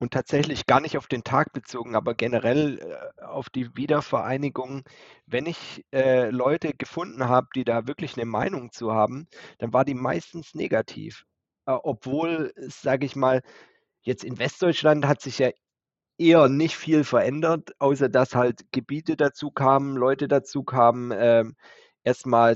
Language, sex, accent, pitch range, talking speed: German, male, German, 115-140 Hz, 150 wpm